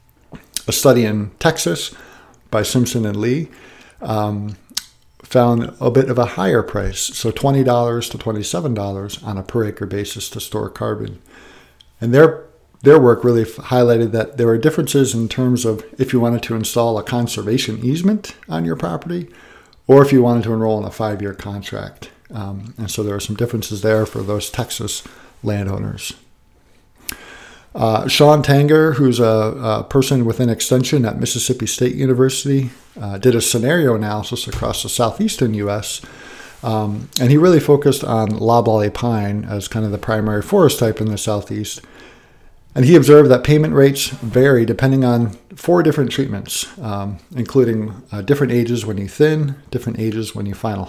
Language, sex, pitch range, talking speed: English, male, 105-130 Hz, 165 wpm